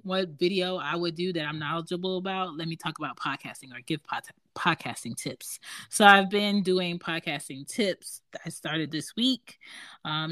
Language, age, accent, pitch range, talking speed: English, 30-49, American, 150-190 Hz, 180 wpm